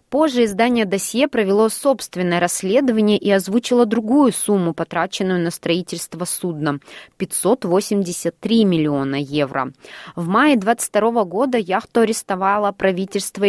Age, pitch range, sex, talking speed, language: 20-39, 165-210 Hz, female, 105 wpm, Russian